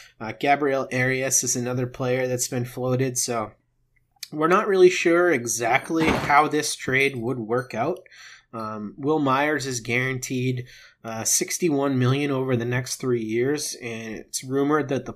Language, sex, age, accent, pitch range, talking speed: English, male, 30-49, American, 120-145 Hz, 155 wpm